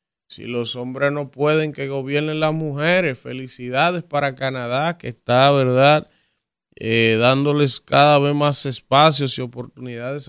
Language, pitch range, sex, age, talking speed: Spanish, 120-145 Hz, male, 20-39, 135 wpm